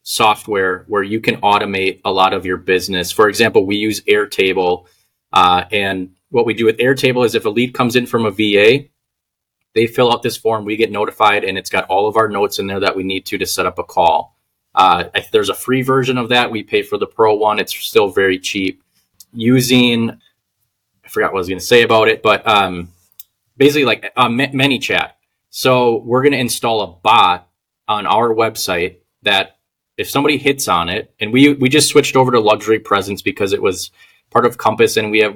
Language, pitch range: English, 100-130 Hz